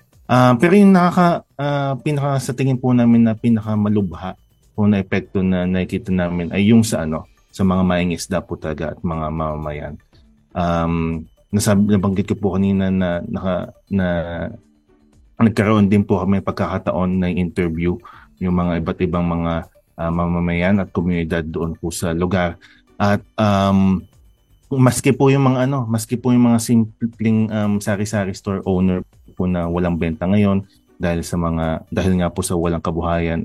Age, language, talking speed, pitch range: 30-49, Filipino, 160 wpm, 85-105 Hz